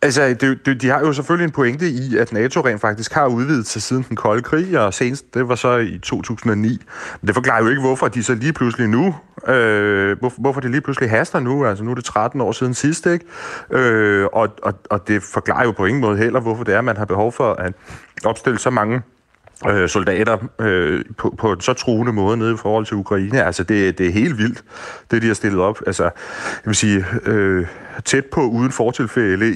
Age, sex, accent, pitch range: 30-49, male, native, 105-130 Hz